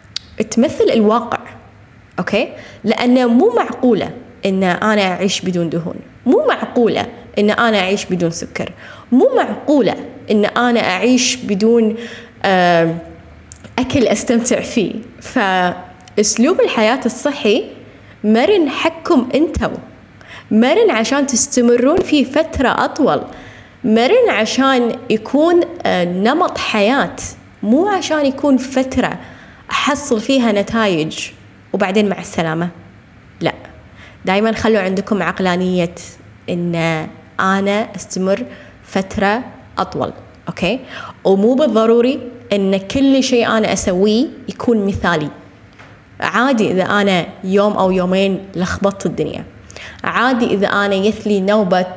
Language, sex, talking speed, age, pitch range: Arabic, female, 100 wpm, 20-39, 185-250 Hz